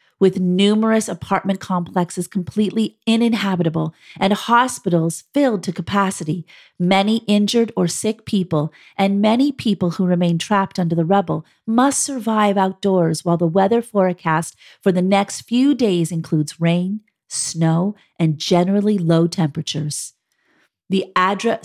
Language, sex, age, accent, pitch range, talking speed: English, female, 40-59, American, 170-210 Hz, 130 wpm